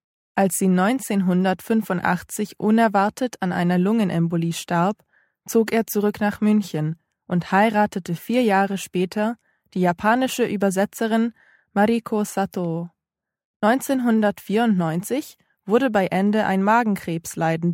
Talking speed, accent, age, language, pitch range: 100 wpm, German, 20-39, English, 175-215 Hz